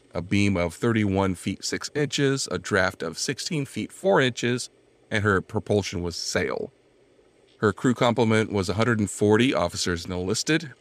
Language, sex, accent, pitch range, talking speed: English, male, American, 90-125 Hz, 145 wpm